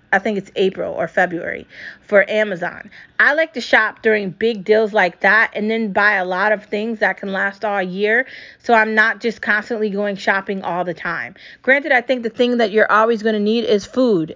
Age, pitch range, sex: 30-49, 190-235 Hz, female